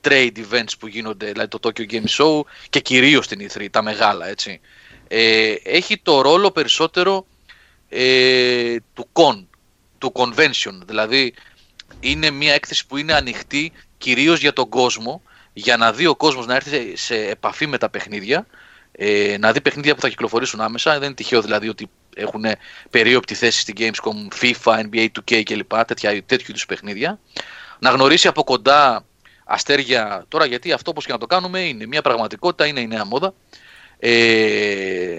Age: 30-49